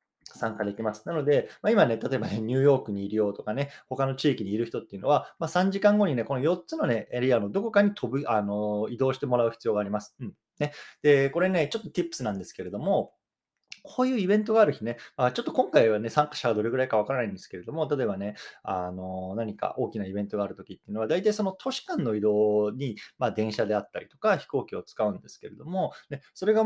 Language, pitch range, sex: Japanese, 105-175 Hz, male